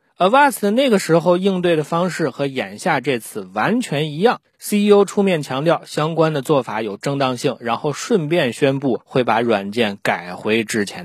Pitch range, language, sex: 120-205 Hz, Chinese, male